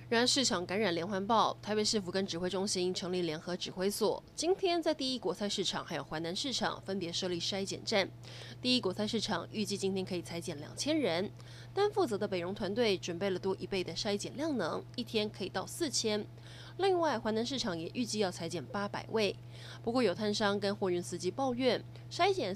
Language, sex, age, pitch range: Chinese, female, 20-39, 175-230 Hz